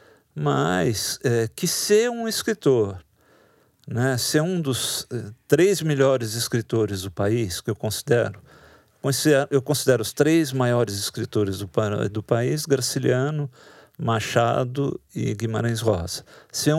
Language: Portuguese